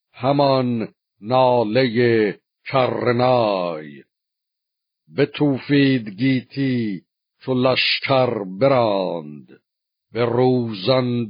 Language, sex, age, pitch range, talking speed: Persian, male, 60-79, 115-135 Hz, 60 wpm